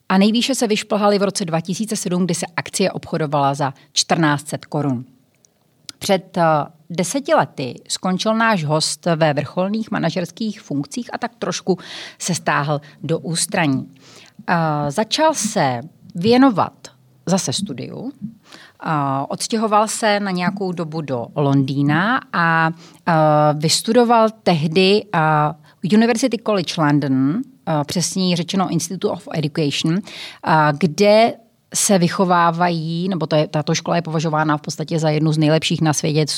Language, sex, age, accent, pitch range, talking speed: Czech, female, 30-49, native, 150-200 Hz, 115 wpm